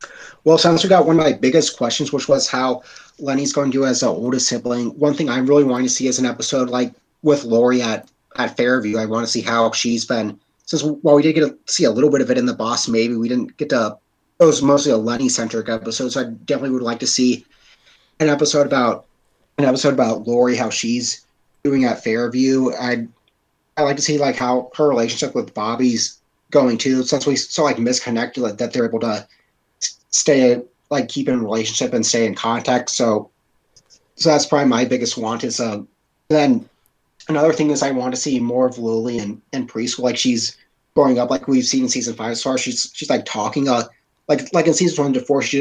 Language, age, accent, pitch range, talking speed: English, 30-49, American, 120-145 Hz, 230 wpm